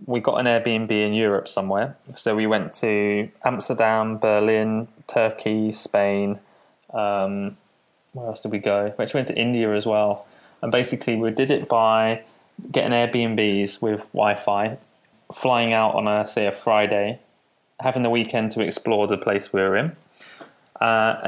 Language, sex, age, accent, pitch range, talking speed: English, male, 20-39, British, 100-115 Hz, 160 wpm